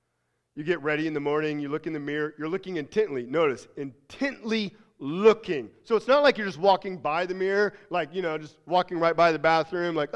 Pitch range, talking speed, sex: 120-200 Hz, 220 wpm, male